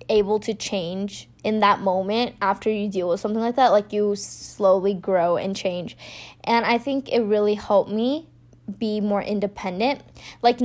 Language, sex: English, female